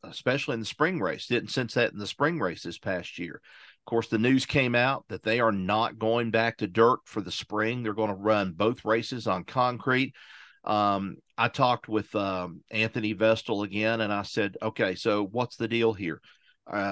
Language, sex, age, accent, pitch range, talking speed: English, male, 50-69, American, 100-115 Hz, 205 wpm